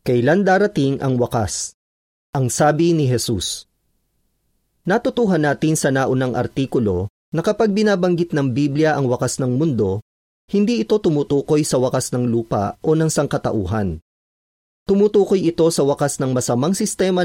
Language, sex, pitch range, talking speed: Filipino, male, 110-170 Hz, 135 wpm